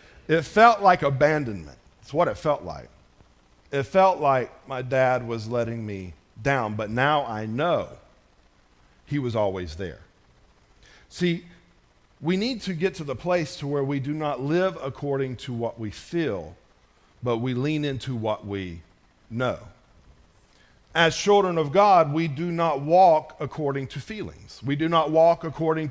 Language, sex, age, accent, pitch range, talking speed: English, male, 50-69, American, 140-200 Hz, 155 wpm